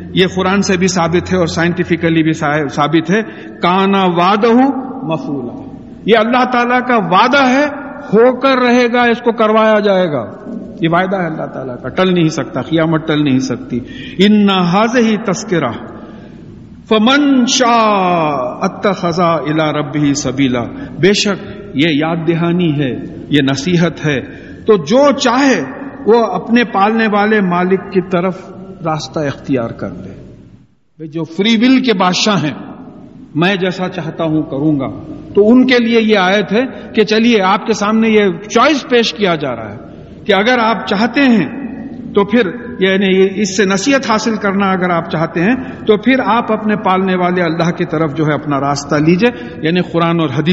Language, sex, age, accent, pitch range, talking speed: English, male, 50-69, Indian, 160-225 Hz, 145 wpm